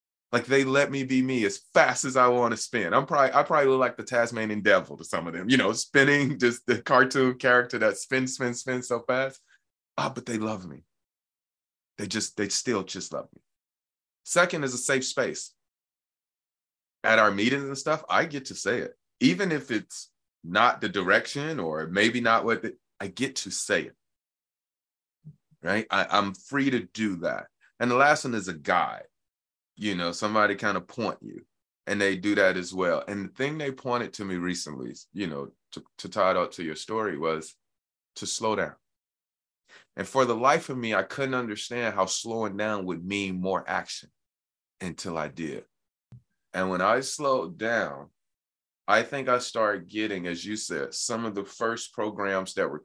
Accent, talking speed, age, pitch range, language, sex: American, 195 wpm, 30-49, 90-125 Hz, English, male